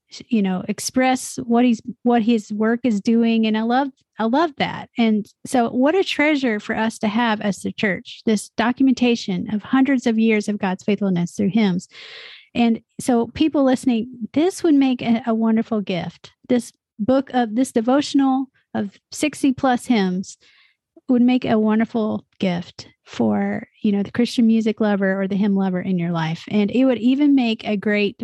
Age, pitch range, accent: 40-59, 200-245 Hz, American